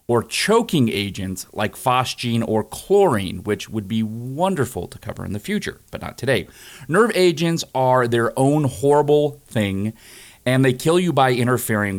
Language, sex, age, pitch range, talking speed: English, male, 40-59, 105-140 Hz, 160 wpm